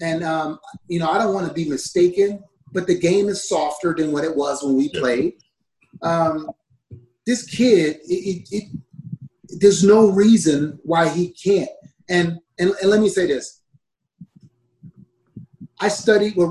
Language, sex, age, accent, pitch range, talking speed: English, male, 30-49, American, 150-200 Hz, 150 wpm